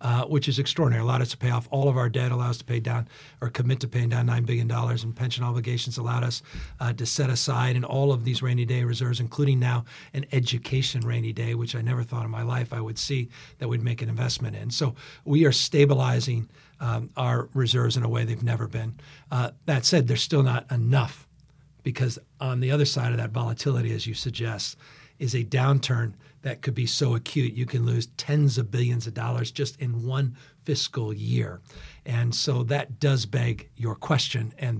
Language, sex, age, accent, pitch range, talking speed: English, male, 50-69, American, 120-140 Hz, 210 wpm